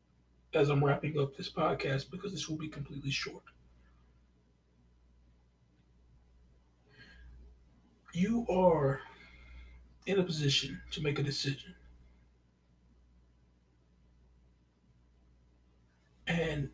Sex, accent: male, American